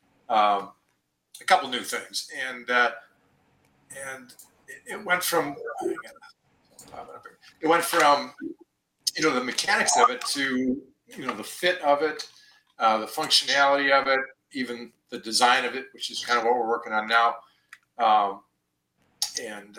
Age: 40-59